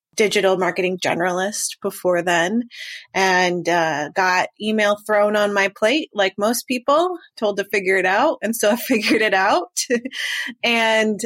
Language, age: English, 20-39